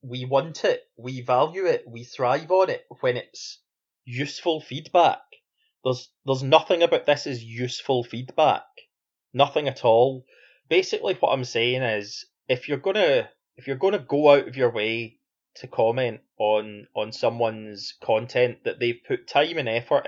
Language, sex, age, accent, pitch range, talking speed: English, male, 30-49, British, 130-195 Hz, 160 wpm